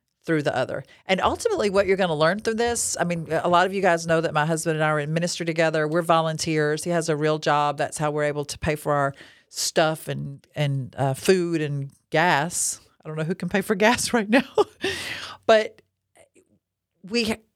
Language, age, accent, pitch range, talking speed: English, 40-59, American, 145-185 Hz, 215 wpm